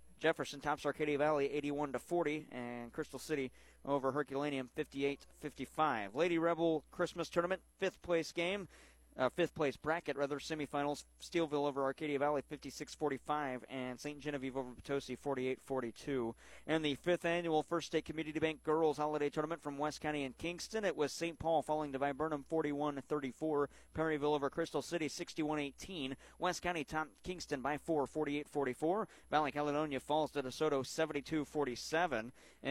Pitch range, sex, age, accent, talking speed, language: 130-155 Hz, male, 40-59, American, 140 wpm, English